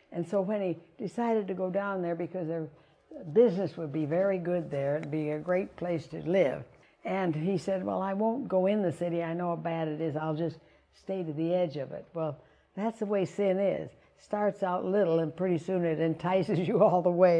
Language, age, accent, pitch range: English, 60-79, American, 165-210 Hz